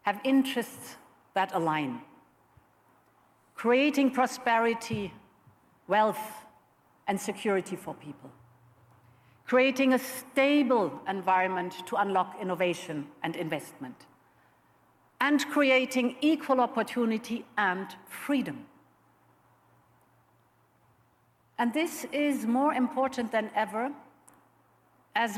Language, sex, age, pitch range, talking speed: English, female, 50-69, 195-265 Hz, 80 wpm